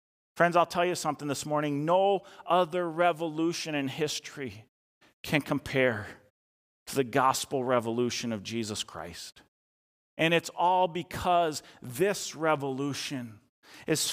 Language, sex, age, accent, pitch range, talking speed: English, male, 40-59, American, 120-165 Hz, 120 wpm